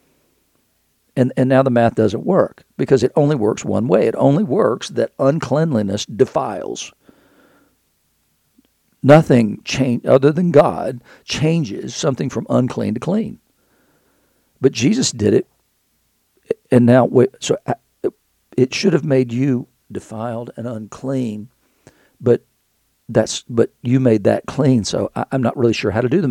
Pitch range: 120-145 Hz